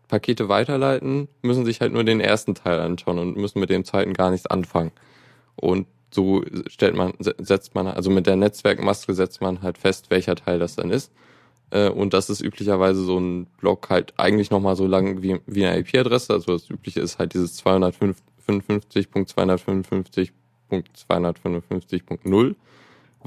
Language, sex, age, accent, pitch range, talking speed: German, male, 10-29, German, 90-110 Hz, 150 wpm